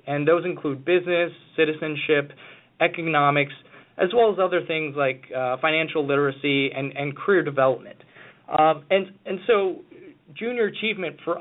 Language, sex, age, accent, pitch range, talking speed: English, male, 20-39, American, 145-195 Hz, 135 wpm